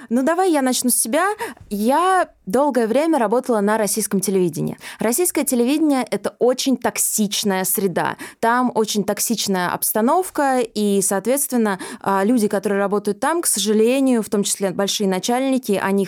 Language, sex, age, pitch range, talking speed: Russian, female, 20-39, 200-250 Hz, 140 wpm